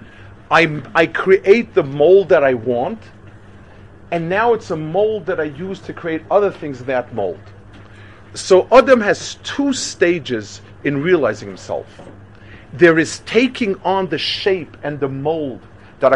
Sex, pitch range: male, 105-175 Hz